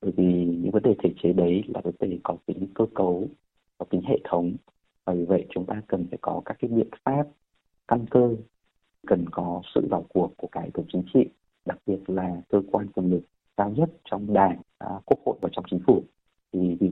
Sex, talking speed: male, 215 wpm